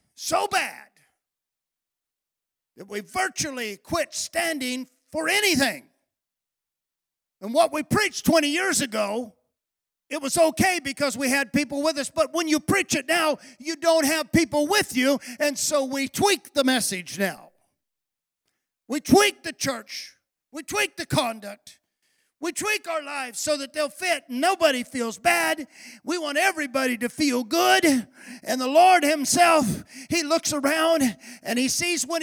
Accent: American